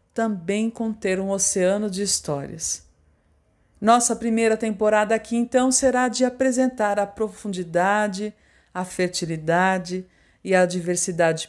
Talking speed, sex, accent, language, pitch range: 110 wpm, female, Brazilian, Portuguese, 170-220 Hz